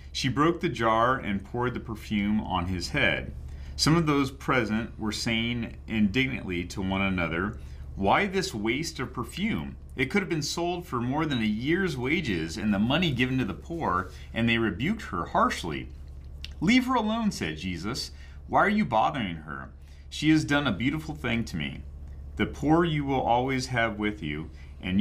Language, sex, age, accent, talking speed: English, male, 40-59, American, 180 wpm